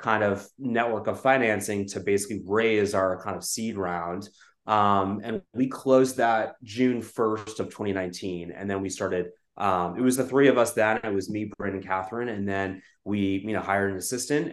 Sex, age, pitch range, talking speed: male, 20-39, 100-115 Hz, 200 wpm